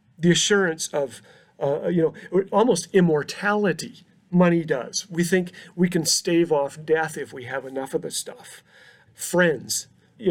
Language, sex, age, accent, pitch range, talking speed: English, male, 40-59, American, 145-185 Hz, 150 wpm